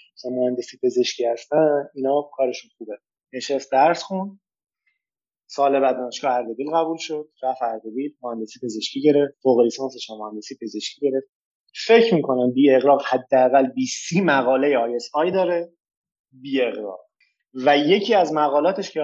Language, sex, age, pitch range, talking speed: Persian, male, 30-49, 130-180 Hz, 135 wpm